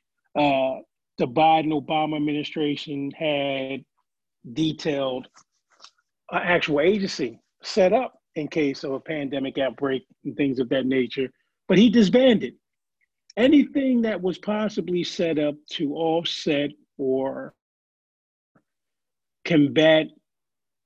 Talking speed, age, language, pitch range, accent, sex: 105 wpm, 30-49, English, 135-165 Hz, American, male